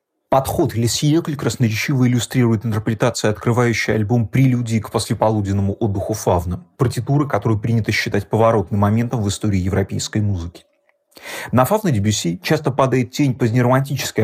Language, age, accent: Russian, 30-49, native